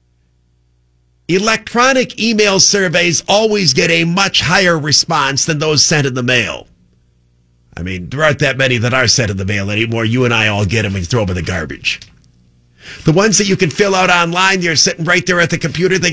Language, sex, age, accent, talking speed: English, male, 50-69, American, 210 wpm